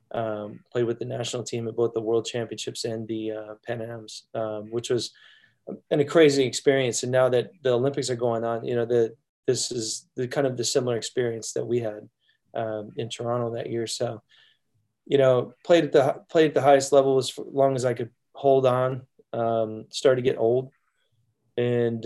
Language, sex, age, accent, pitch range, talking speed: English, male, 20-39, American, 115-135 Hz, 200 wpm